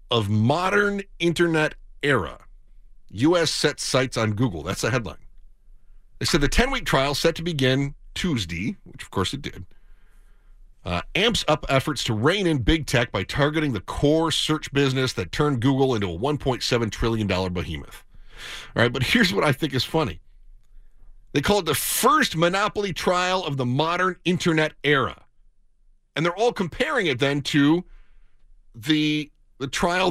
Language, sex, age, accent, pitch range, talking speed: English, male, 50-69, American, 110-155 Hz, 160 wpm